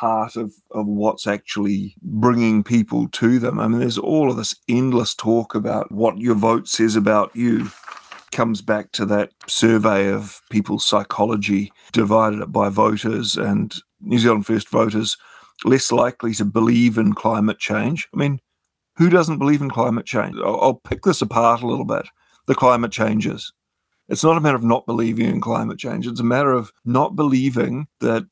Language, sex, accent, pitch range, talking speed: English, male, Australian, 110-120 Hz, 175 wpm